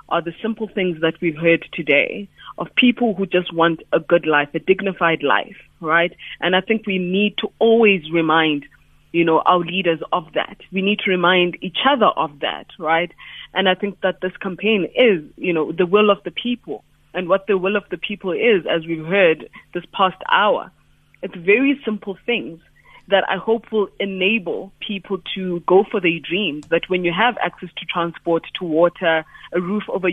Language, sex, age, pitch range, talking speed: English, female, 30-49, 170-205 Hz, 195 wpm